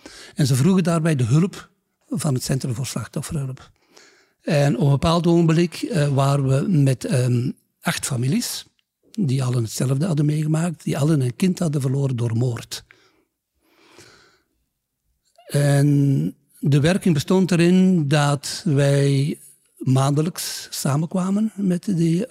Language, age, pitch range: Dutch, 60-79, 135-170 Hz